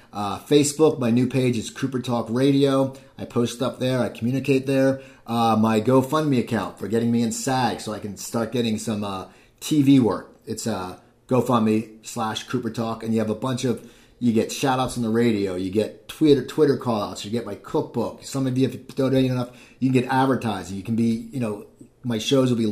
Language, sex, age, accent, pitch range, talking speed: English, male, 30-49, American, 115-155 Hz, 215 wpm